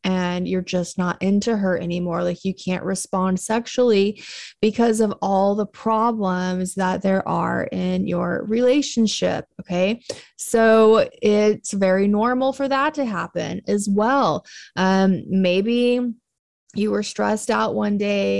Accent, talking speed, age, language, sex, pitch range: American, 135 wpm, 20-39, English, female, 185-225 Hz